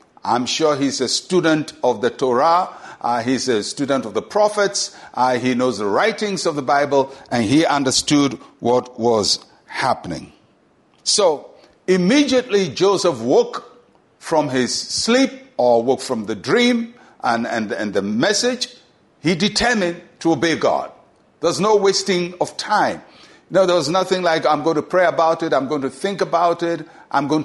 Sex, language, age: male, English, 60-79